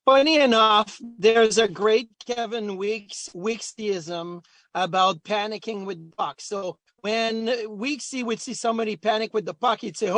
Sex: male